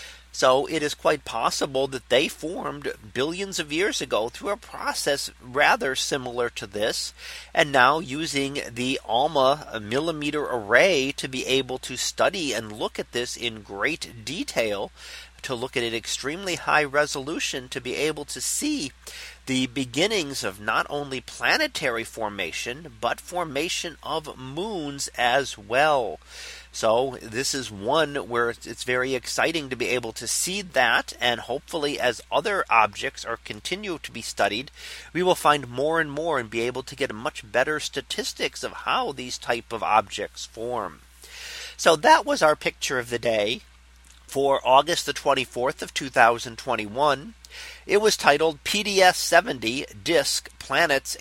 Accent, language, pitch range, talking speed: American, English, 125-160 Hz, 150 wpm